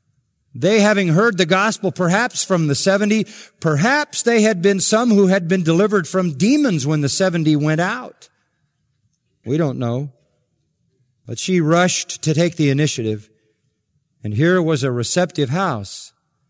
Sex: male